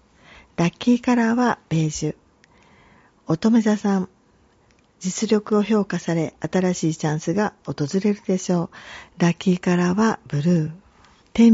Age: 50-69